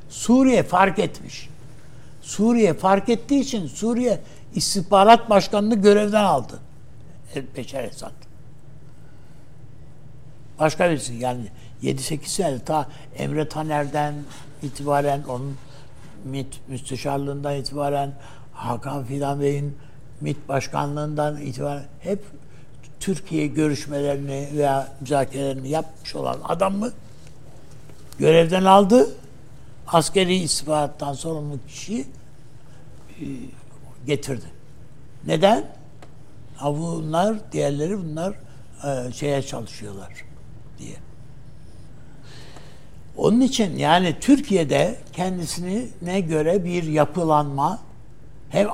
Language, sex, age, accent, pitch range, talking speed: Turkish, male, 60-79, native, 135-165 Hz, 80 wpm